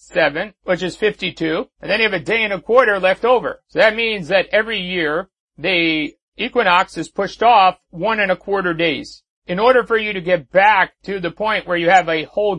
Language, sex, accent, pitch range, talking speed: English, male, American, 180-210 Hz, 220 wpm